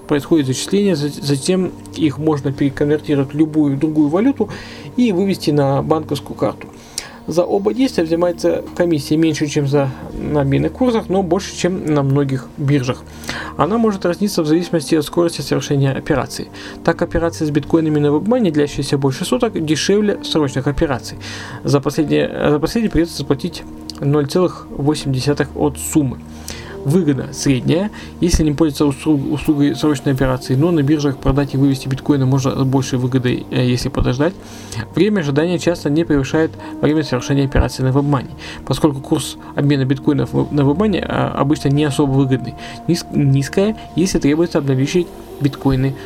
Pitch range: 135-165 Hz